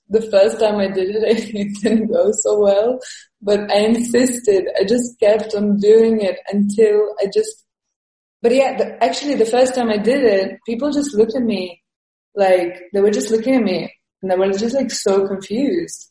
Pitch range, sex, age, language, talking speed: 185-235 Hz, female, 20-39, English, 195 wpm